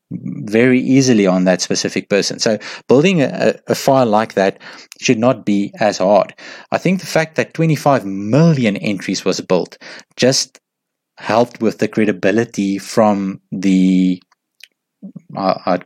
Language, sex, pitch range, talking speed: English, male, 95-120 Hz, 135 wpm